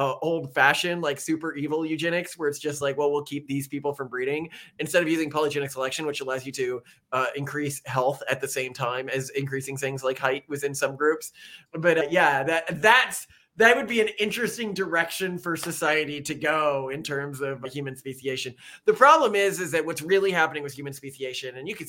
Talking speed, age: 205 wpm, 20-39